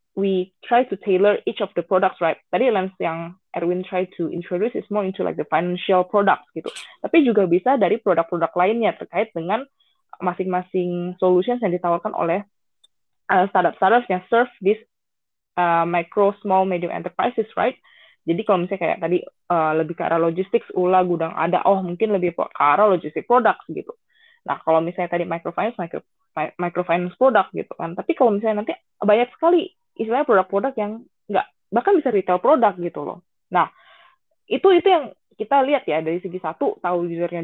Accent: native